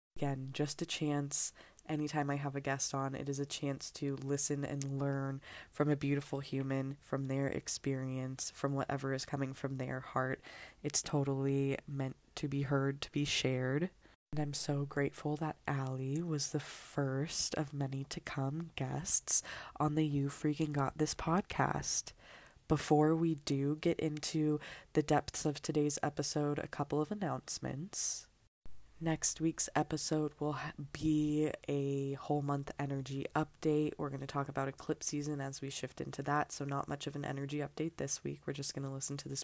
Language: English